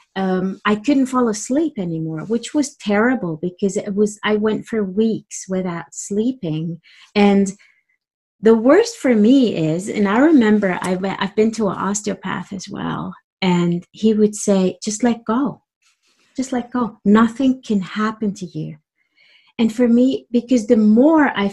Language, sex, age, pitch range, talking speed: German, female, 30-49, 200-255 Hz, 160 wpm